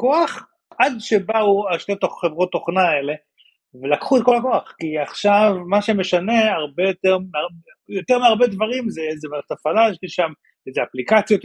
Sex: male